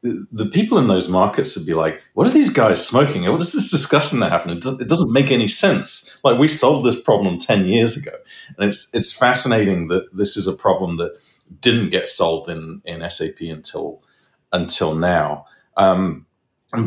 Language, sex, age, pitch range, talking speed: English, male, 40-59, 85-105 Hz, 190 wpm